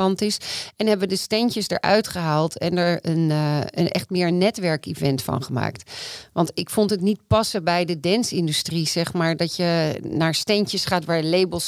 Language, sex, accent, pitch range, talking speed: Dutch, female, Dutch, 160-190 Hz, 180 wpm